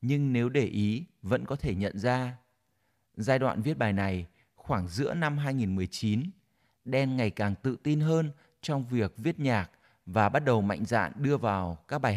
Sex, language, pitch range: male, Vietnamese, 110-145 Hz